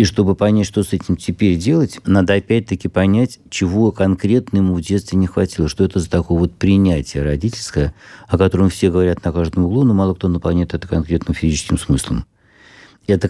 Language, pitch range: Russian, 85-100 Hz